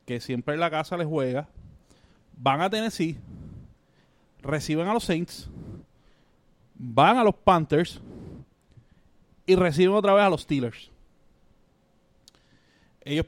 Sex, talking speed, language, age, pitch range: male, 115 wpm, Spanish, 30-49, 140-180 Hz